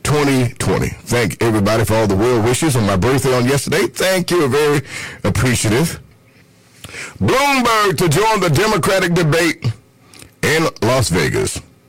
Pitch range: 120-155 Hz